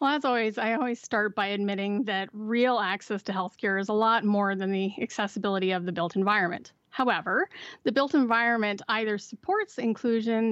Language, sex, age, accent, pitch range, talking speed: English, female, 30-49, American, 205-250 Hz, 175 wpm